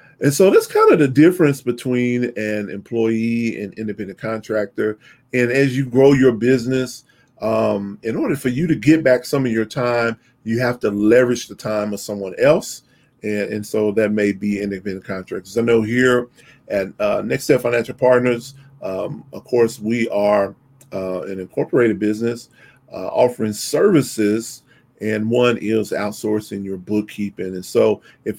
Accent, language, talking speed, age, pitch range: American, English, 165 wpm, 40-59, 105-130 Hz